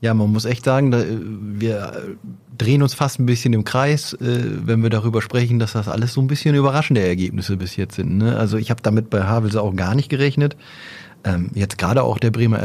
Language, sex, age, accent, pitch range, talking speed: German, male, 30-49, German, 100-120 Hz, 225 wpm